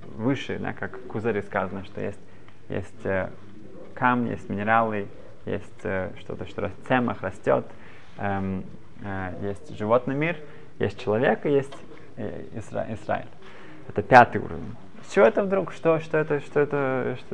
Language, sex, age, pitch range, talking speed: Russian, male, 20-39, 105-130 Hz, 130 wpm